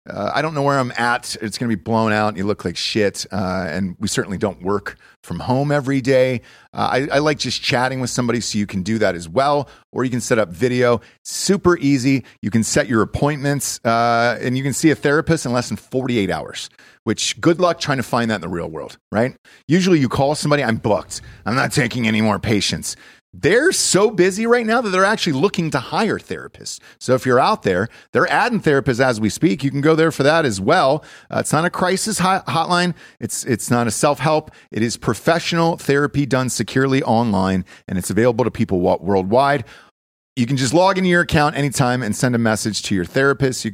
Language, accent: English, American